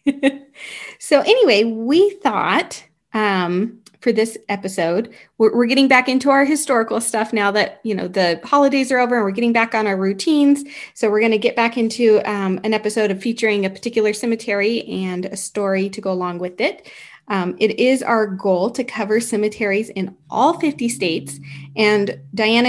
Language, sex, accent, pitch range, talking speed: English, female, American, 195-240 Hz, 180 wpm